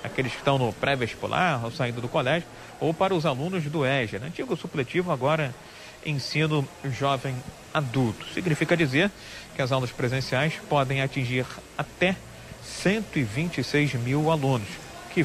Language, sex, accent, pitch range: Portuguese, male, Brazilian, 125-155 Hz